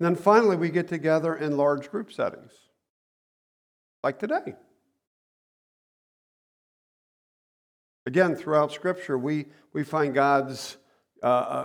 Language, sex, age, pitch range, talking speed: English, male, 50-69, 135-160 Hz, 105 wpm